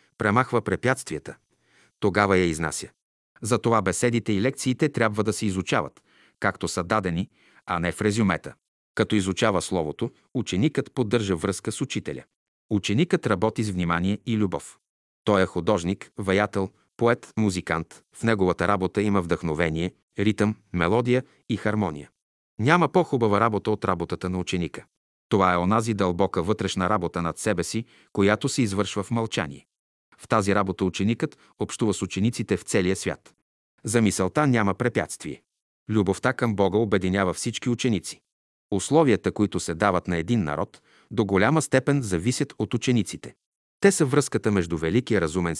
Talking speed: 145 wpm